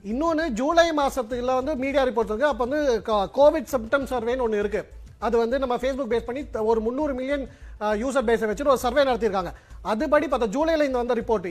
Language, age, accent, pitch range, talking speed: Tamil, 30-49, native, 245-300 Hz, 100 wpm